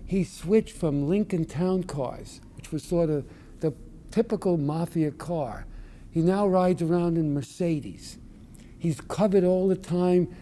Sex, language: male, English